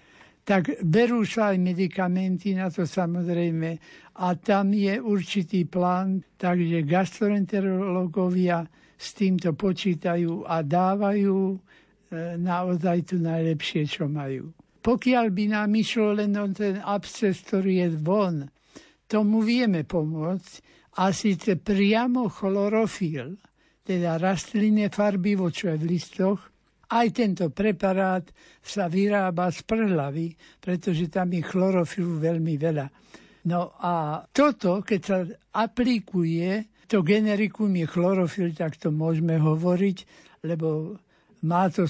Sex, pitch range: male, 165-200 Hz